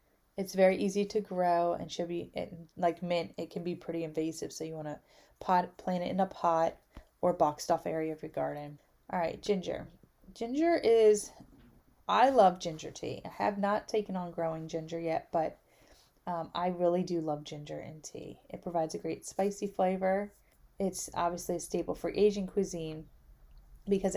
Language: English